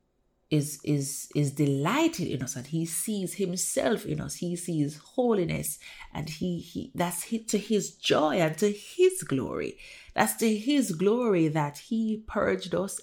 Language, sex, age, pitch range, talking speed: English, female, 30-49, 150-220 Hz, 165 wpm